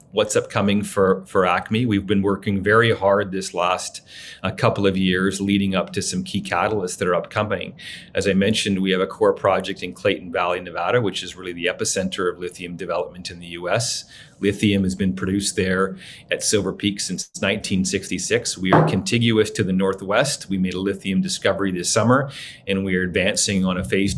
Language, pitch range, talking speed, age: English, 95-110 Hz, 190 wpm, 40-59